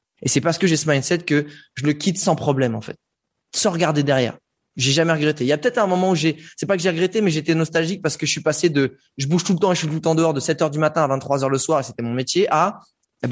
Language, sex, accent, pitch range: French, male, French, 125-165 Hz